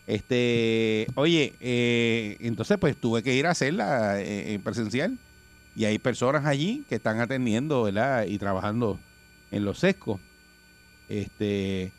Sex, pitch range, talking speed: male, 95-125 Hz, 130 wpm